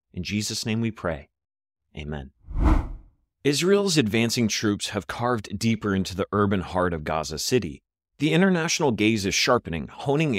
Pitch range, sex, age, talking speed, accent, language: 90-125 Hz, male, 30-49, 145 wpm, American, English